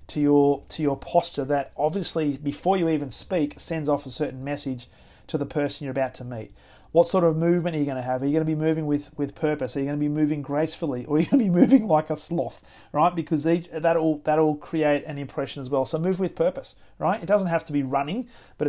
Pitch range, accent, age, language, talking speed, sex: 135-165 Hz, Australian, 30-49, English, 255 wpm, male